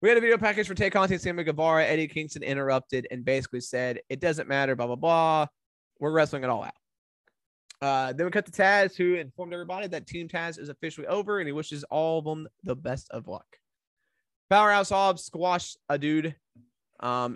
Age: 20-39